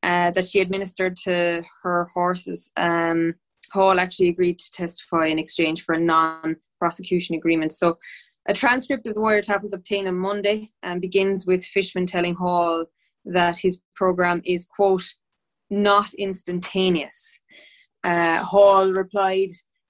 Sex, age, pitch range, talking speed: female, 20-39, 175-200 Hz, 135 wpm